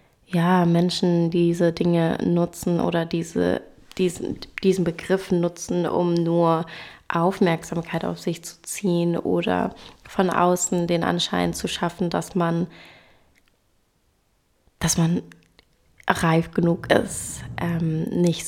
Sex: female